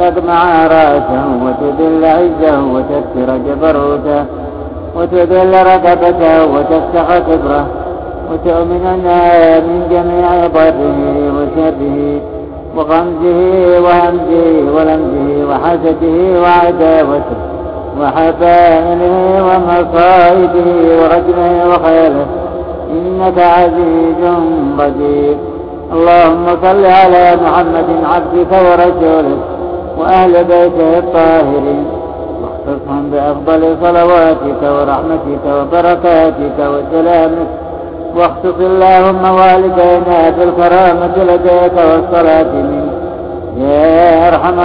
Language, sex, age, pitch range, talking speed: Arabic, male, 60-79, 160-175 Hz, 70 wpm